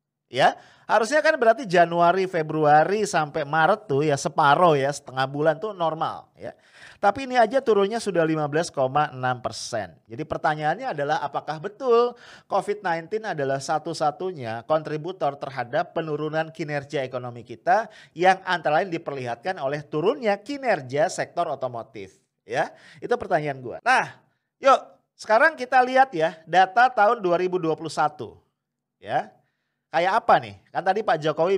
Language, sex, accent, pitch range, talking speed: English, male, Indonesian, 145-200 Hz, 130 wpm